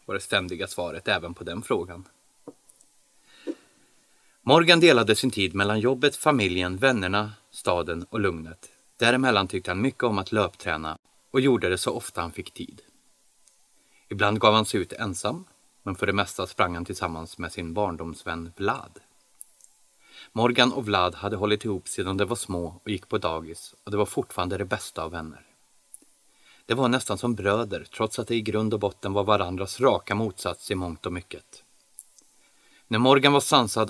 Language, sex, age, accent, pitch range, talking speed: Swedish, male, 30-49, native, 90-115 Hz, 170 wpm